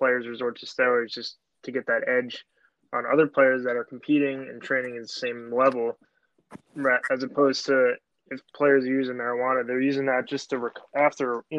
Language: English